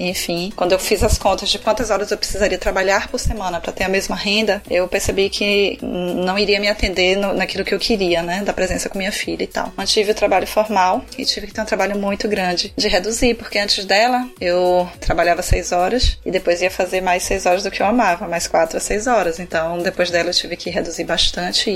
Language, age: Portuguese, 20-39